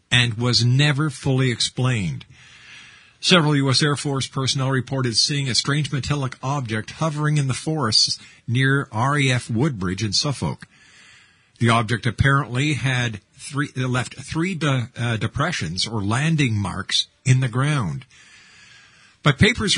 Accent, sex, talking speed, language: American, male, 130 wpm, English